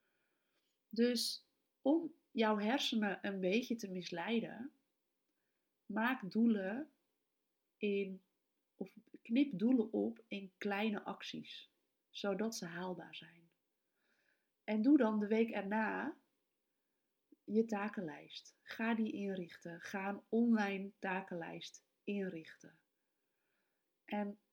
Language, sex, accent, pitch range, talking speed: Dutch, female, Dutch, 185-230 Hz, 95 wpm